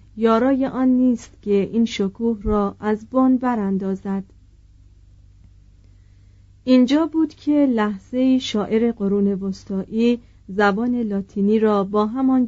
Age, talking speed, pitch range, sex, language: 40-59, 105 wpm, 200-245 Hz, female, Persian